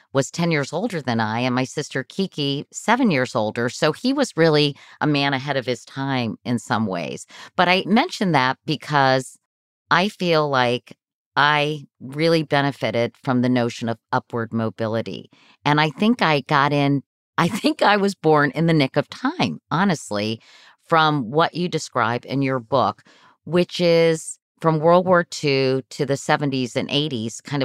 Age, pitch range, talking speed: 50-69, 125-160 Hz, 170 wpm